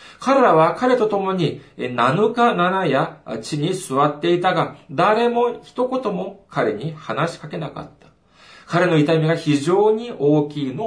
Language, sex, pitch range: Japanese, male, 145-225 Hz